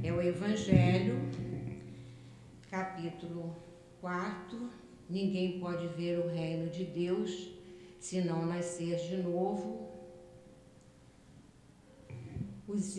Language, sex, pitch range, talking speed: Portuguese, female, 170-195 Hz, 85 wpm